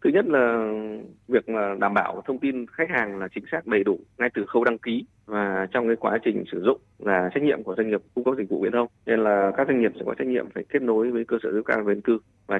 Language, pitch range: Vietnamese, 105-125 Hz